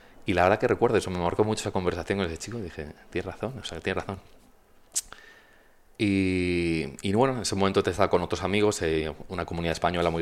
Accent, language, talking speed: Spanish, Spanish, 215 wpm